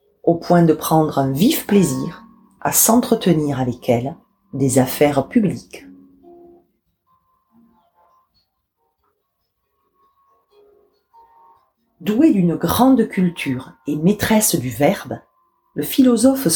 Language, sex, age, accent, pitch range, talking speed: French, female, 40-59, French, 160-255 Hz, 85 wpm